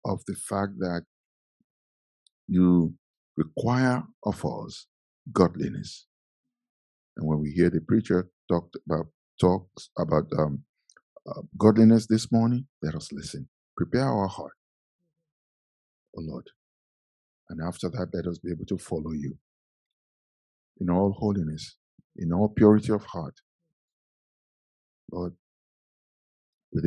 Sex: male